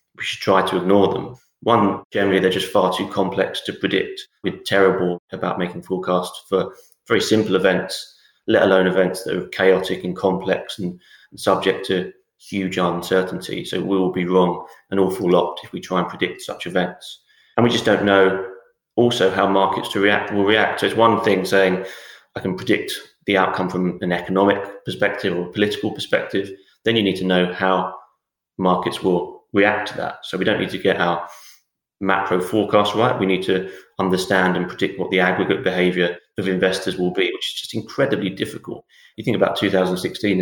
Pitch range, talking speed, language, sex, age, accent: 90-100 Hz, 190 wpm, English, male, 30-49, British